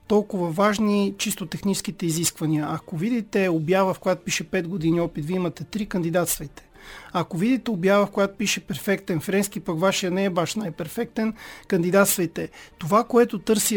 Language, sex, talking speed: Bulgarian, male, 155 wpm